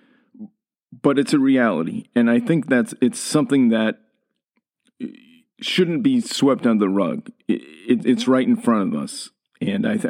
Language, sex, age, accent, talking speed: English, male, 40-59, American, 165 wpm